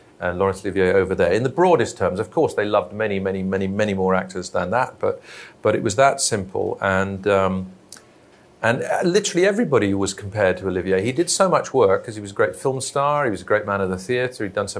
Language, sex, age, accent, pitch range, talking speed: English, male, 40-59, British, 100-135 Hz, 240 wpm